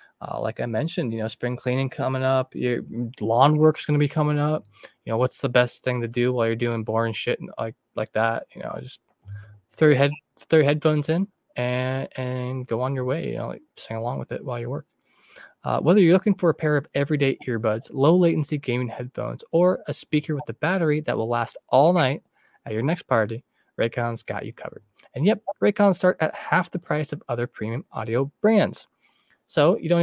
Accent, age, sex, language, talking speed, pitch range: American, 20-39, male, English, 220 wpm, 115-155 Hz